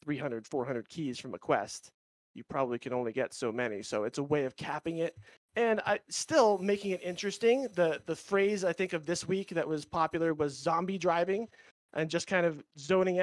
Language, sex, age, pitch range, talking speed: English, male, 30-49, 140-180 Hz, 200 wpm